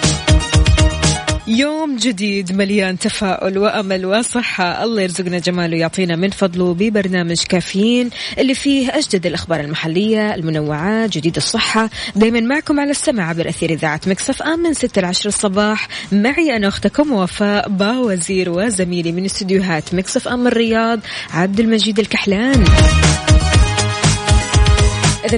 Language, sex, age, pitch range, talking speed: Arabic, female, 20-39, 175-235 Hz, 115 wpm